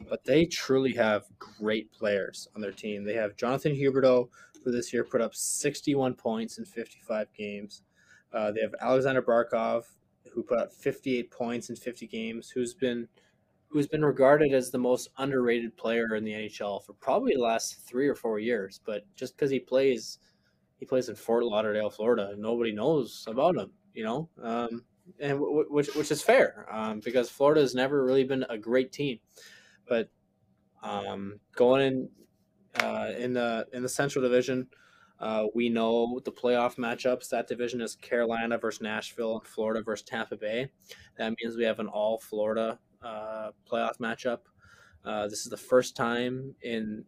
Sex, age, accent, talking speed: male, 20-39, American, 175 wpm